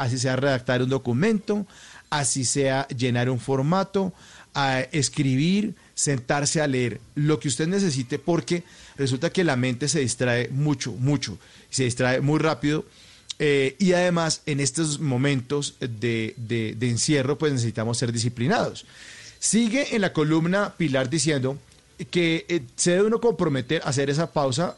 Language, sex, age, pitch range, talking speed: Spanish, male, 40-59, 130-170 Hz, 150 wpm